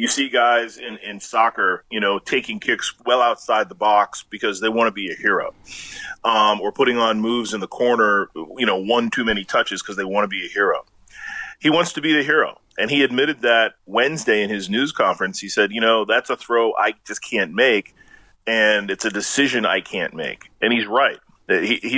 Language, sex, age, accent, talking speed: English, male, 40-59, American, 215 wpm